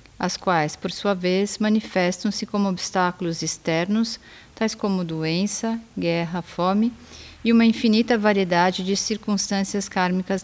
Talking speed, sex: 120 wpm, female